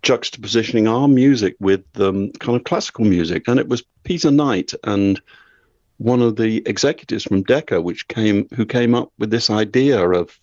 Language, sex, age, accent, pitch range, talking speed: English, male, 50-69, British, 100-120 Hz, 175 wpm